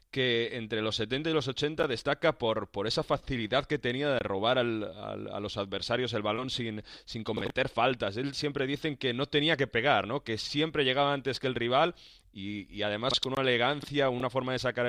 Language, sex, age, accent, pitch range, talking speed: Spanish, male, 30-49, Spanish, 105-130 Hz, 215 wpm